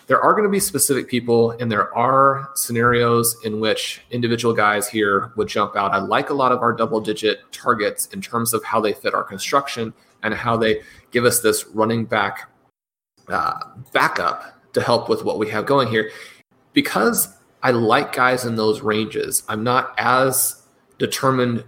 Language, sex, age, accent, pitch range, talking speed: English, male, 30-49, American, 105-125 Hz, 180 wpm